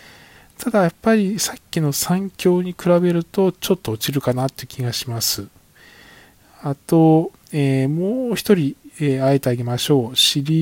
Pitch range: 125-160 Hz